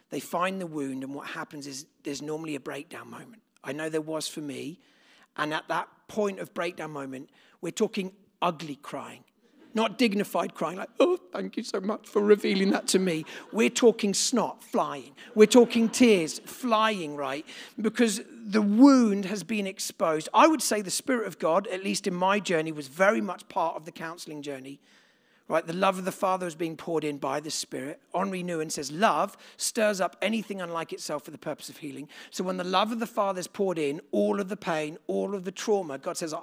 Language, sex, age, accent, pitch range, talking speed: English, male, 40-59, British, 155-215 Hz, 210 wpm